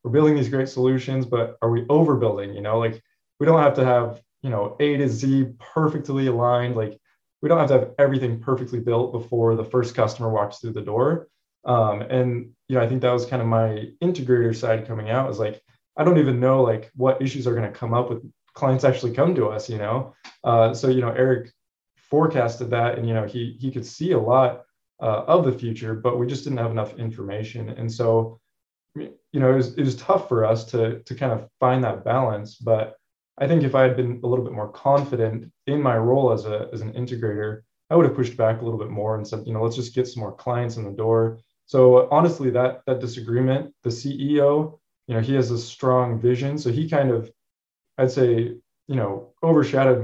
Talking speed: 225 wpm